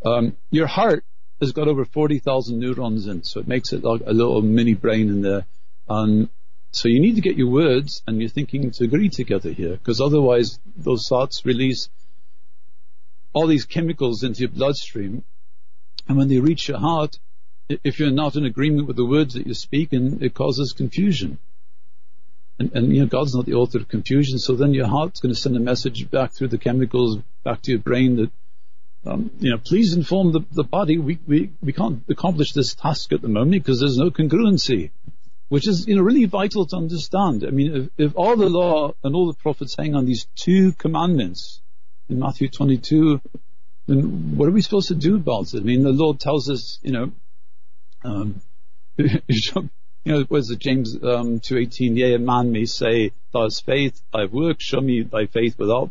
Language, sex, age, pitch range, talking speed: English, male, 50-69, 120-150 Hz, 195 wpm